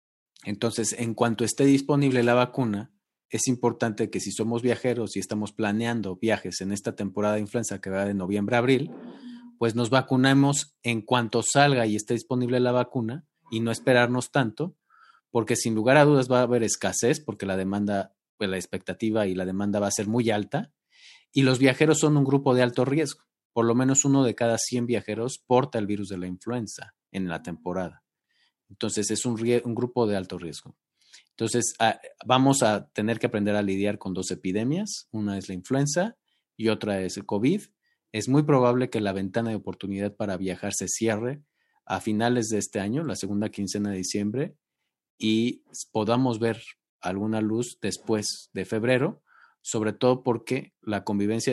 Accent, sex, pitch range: Mexican, male, 100-125 Hz